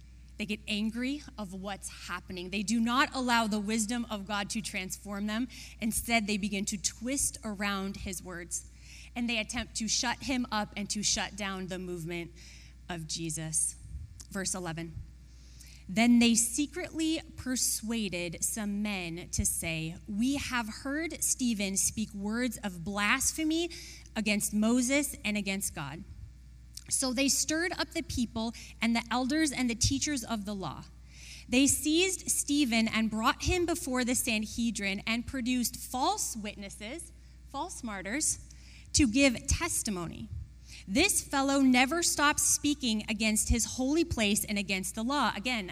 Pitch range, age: 195-255 Hz, 20-39